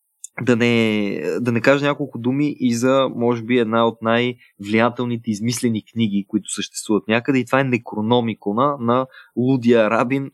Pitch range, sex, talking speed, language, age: 105-130 Hz, male, 150 wpm, Bulgarian, 20-39